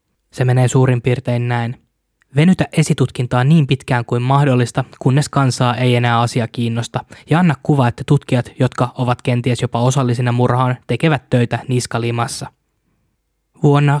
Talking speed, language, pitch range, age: 135 wpm, Finnish, 125-135 Hz, 20-39